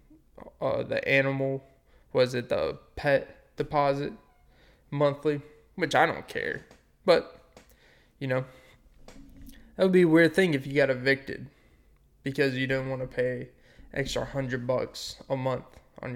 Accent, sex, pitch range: American, male, 135-195 Hz